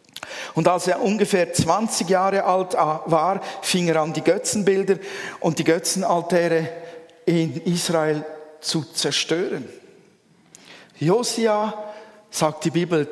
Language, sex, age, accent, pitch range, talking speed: German, male, 50-69, Austrian, 165-200 Hz, 110 wpm